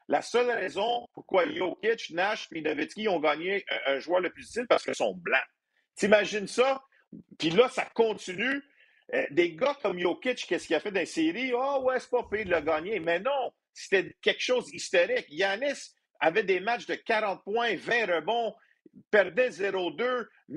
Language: French